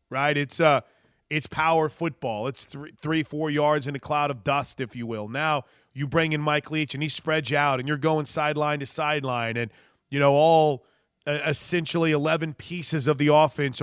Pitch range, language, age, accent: 145-190 Hz, English, 30-49, American